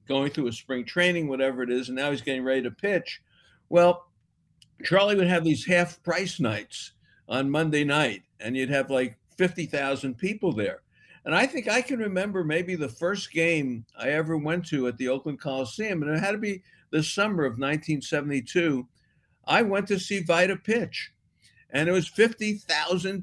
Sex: male